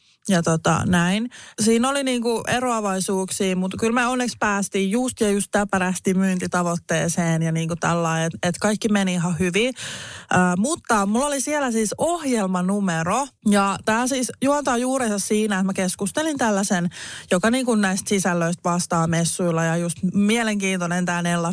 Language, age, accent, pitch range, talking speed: Finnish, 20-39, native, 175-225 Hz, 145 wpm